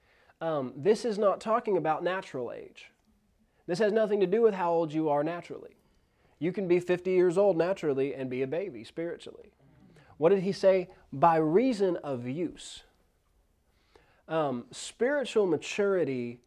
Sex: male